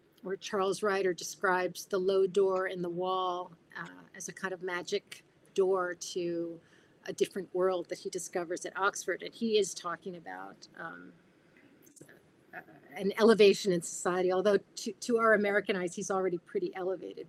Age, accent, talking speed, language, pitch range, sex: 40-59, American, 160 wpm, English, 175-205 Hz, female